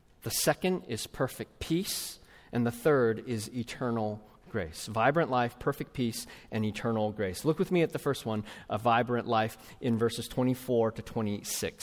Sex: male